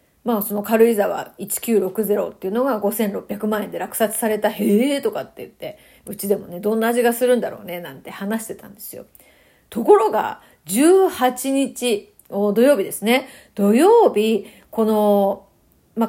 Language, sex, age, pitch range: Japanese, female, 40-59, 205-280 Hz